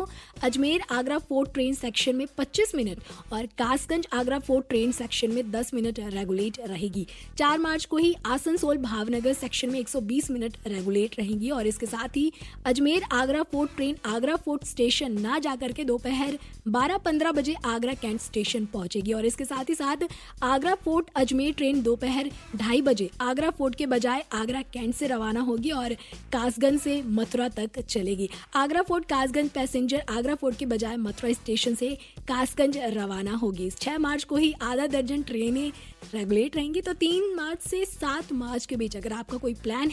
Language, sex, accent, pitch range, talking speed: Hindi, female, native, 235-305 Hz, 130 wpm